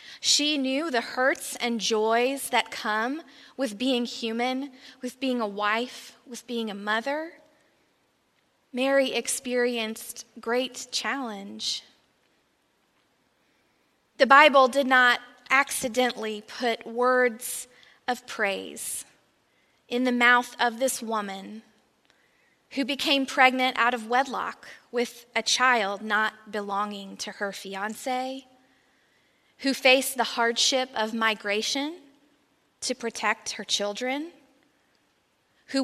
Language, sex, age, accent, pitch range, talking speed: English, female, 20-39, American, 225-265 Hz, 105 wpm